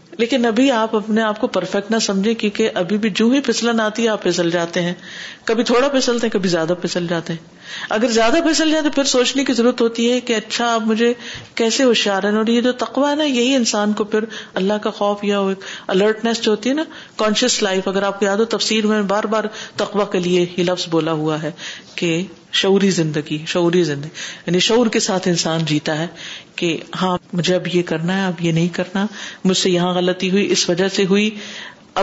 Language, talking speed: Urdu, 215 wpm